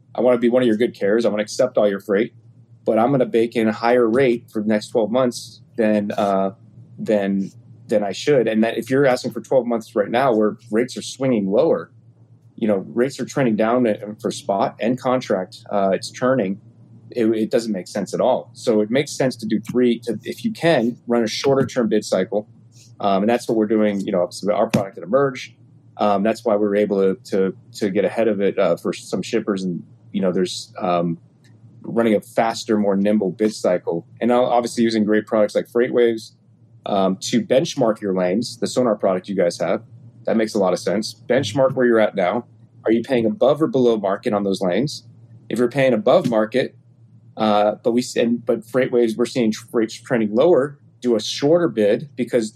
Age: 30-49